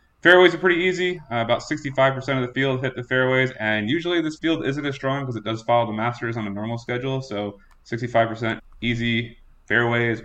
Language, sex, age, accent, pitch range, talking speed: English, male, 20-39, American, 110-135 Hz, 200 wpm